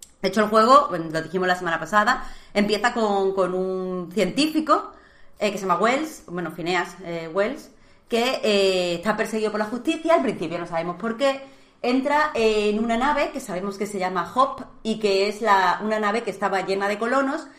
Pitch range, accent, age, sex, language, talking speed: 185-230 Hz, Spanish, 30-49, female, Spanish, 190 wpm